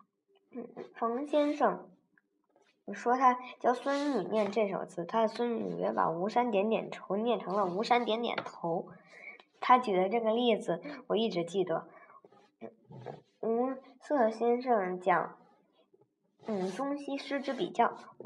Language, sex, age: Chinese, male, 20-39